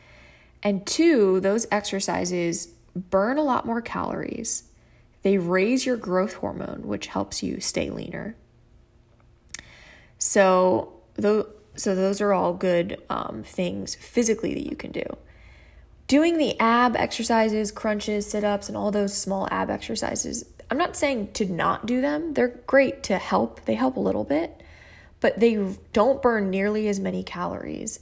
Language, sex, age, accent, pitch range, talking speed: English, female, 20-39, American, 175-230 Hz, 145 wpm